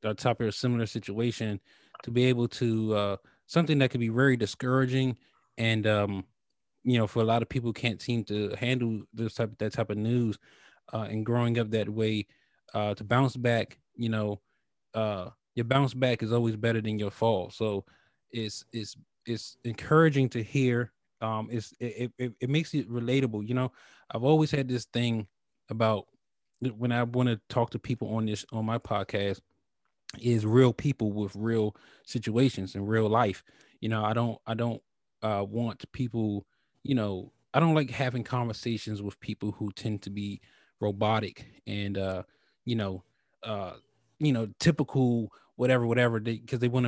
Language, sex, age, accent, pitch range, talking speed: English, male, 20-39, American, 110-125 Hz, 175 wpm